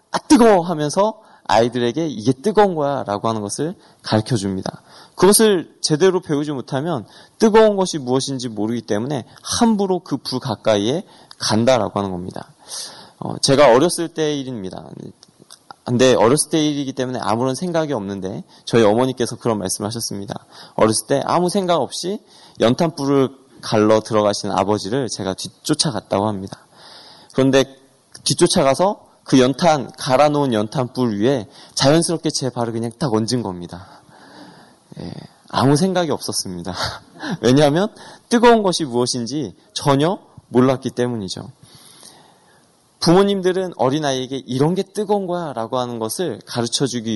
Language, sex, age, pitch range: Korean, male, 20-39, 115-170 Hz